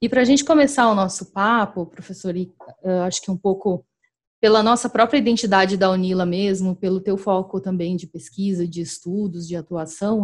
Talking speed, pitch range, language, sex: 180 wpm, 185-225 Hz, Portuguese, female